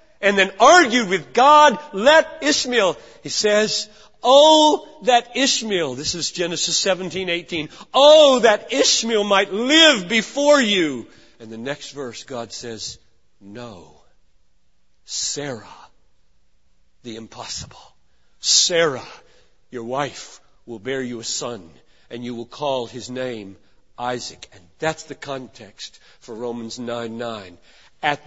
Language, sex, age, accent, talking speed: English, male, 50-69, American, 125 wpm